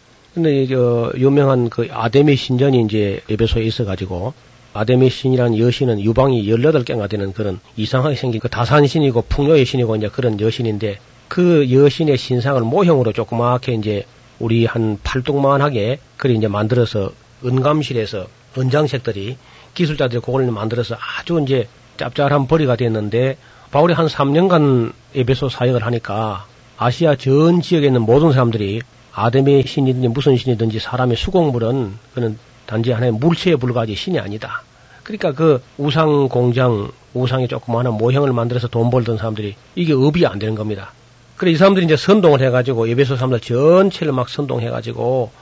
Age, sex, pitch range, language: 40-59, male, 115-140 Hz, Korean